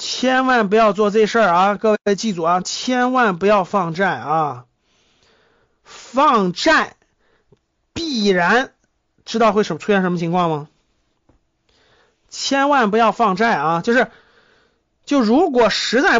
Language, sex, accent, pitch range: Chinese, male, native, 180-240 Hz